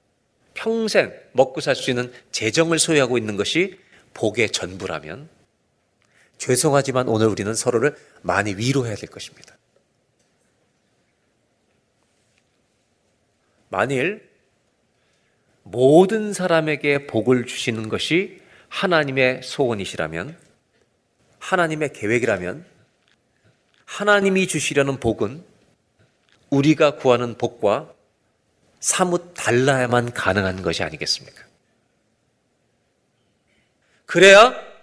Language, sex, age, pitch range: Korean, male, 40-59, 125-195 Hz